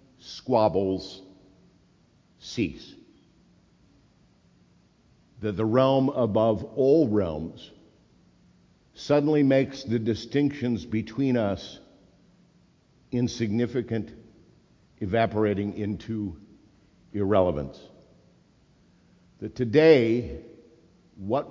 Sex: male